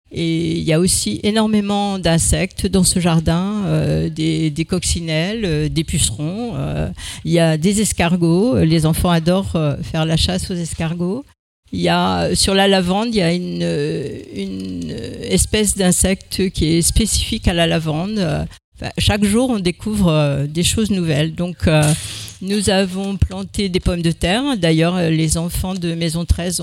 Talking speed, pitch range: 160 wpm, 160-190 Hz